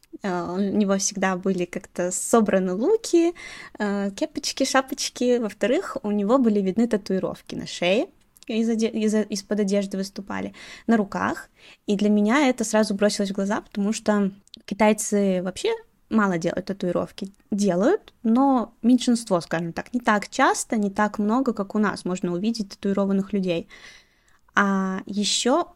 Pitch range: 195-235 Hz